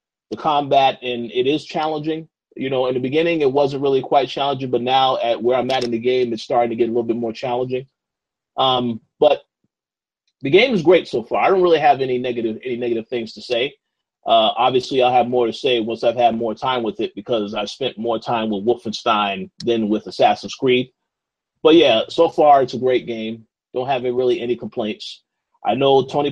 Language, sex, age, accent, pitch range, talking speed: English, male, 30-49, American, 120-145 Hz, 215 wpm